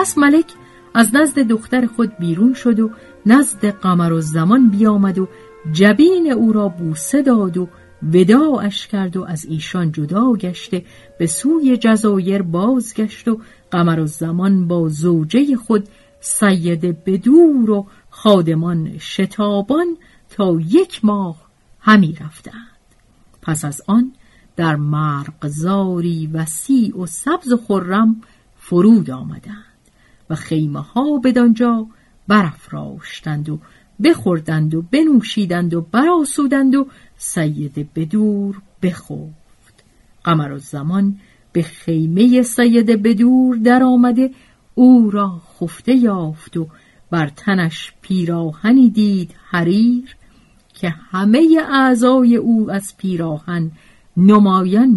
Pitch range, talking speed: 165-235 Hz, 110 wpm